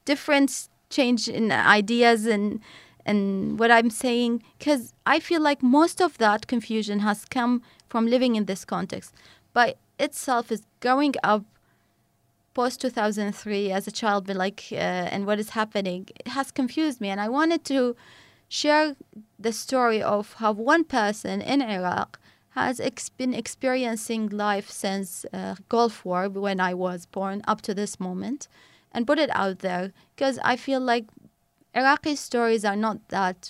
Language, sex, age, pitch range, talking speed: English, female, 20-39, 200-245 Hz, 165 wpm